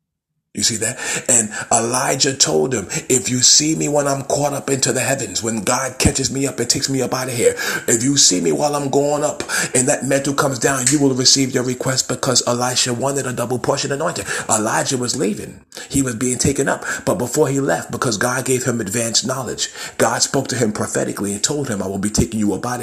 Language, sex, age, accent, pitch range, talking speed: English, male, 40-59, American, 120-140 Hz, 230 wpm